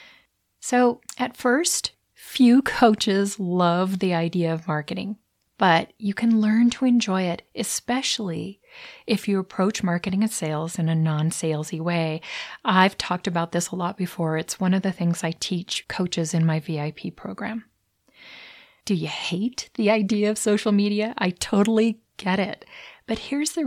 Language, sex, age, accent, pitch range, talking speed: English, female, 30-49, American, 175-230 Hz, 155 wpm